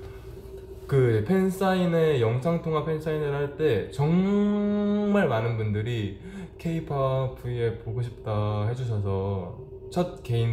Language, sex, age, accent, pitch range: Korean, male, 20-39, native, 105-145 Hz